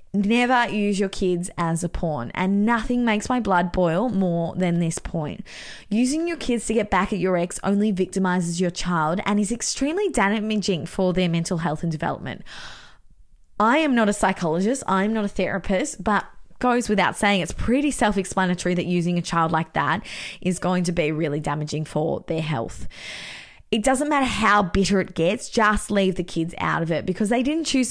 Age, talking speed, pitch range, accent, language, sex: 20-39, 190 wpm, 170-220 Hz, Australian, English, female